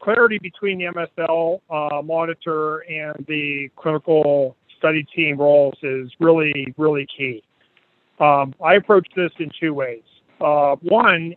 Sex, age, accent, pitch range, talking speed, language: male, 40-59, American, 145-165 Hz, 130 wpm, English